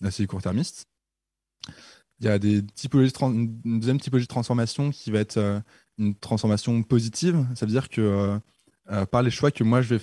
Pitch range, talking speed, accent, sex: 100-120 Hz, 205 wpm, French, male